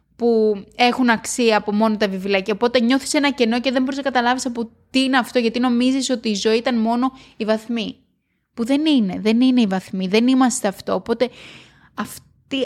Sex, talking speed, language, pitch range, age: female, 200 wpm, Greek, 210-255 Hz, 20-39